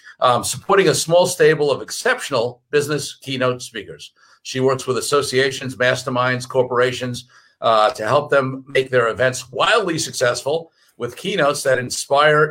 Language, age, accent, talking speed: English, 50-69, American, 140 wpm